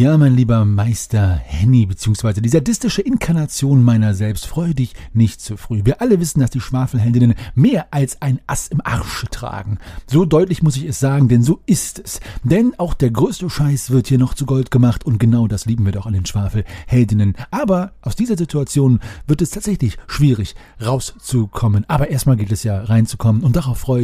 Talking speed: 190 wpm